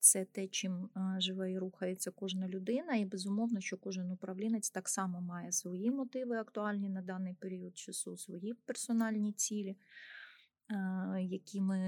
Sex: female